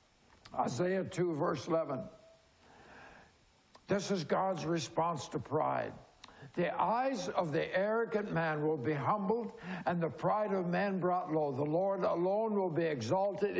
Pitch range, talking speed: 165-200 Hz, 140 wpm